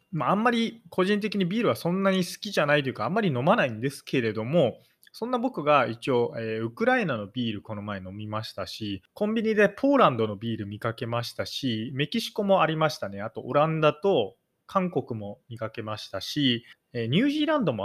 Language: Japanese